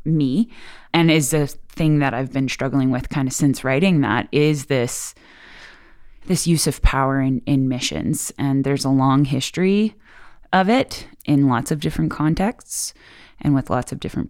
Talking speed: 170 wpm